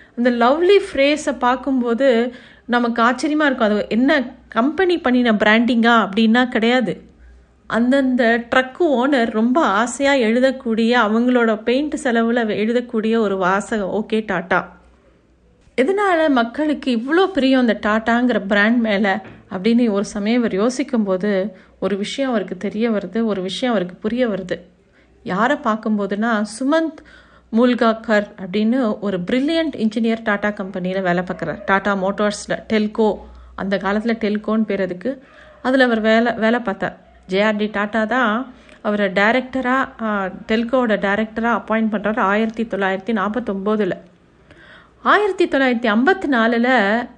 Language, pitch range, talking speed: Tamil, 205-250 Hz, 90 wpm